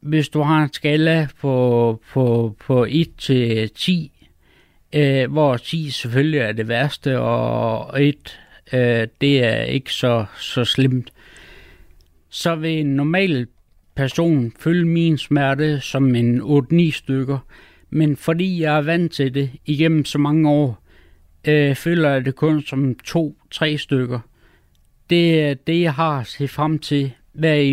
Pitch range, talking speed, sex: 125-150 Hz, 145 wpm, male